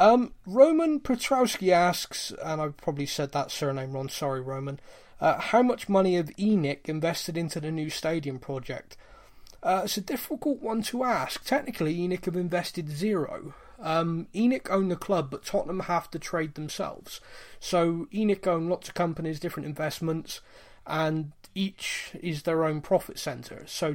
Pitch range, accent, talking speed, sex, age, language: 155-195 Hz, British, 160 wpm, male, 20-39, English